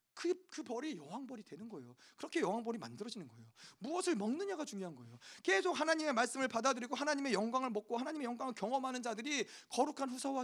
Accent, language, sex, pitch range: native, Korean, male, 220-285 Hz